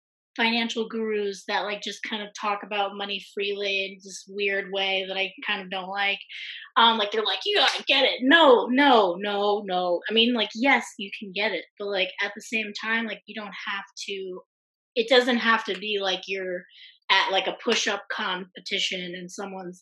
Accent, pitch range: American, 195-245 Hz